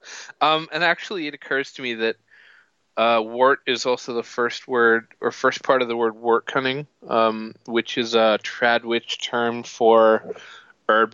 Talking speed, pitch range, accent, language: 165 wpm, 105-120 Hz, American, English